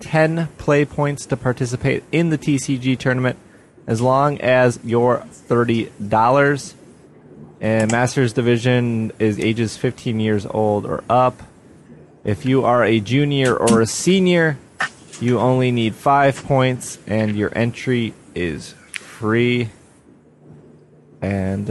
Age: 20-39